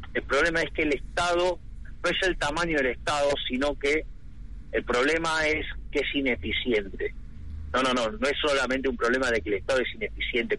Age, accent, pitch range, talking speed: 40-59, Argentinian, 110-185 Hz, 195 wpm